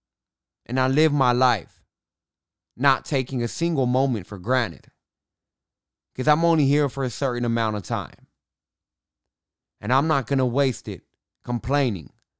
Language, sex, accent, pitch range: English, male, American, 85-135 Hz